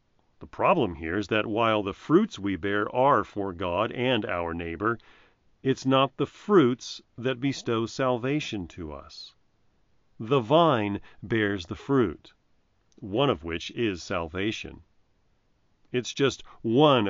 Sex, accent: male, American